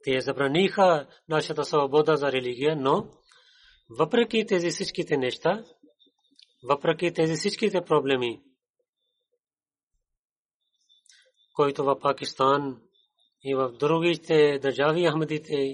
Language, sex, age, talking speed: Bulgarian, male, 30-49, 90 wpm